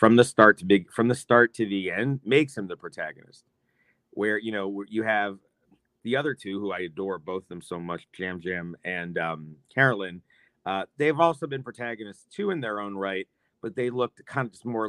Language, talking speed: English, 215 wpm